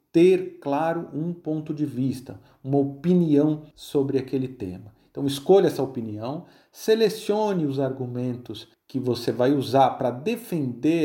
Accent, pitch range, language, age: Brazilian, 130-180 Hz, Portuguese, 50-69